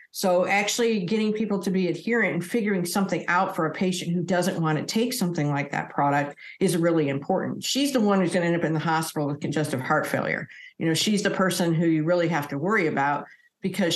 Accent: American